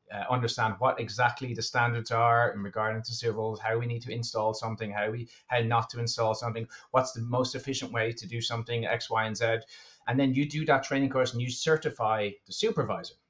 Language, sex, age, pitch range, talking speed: English, male, 30-49, 110-140 Hz, 215 wpm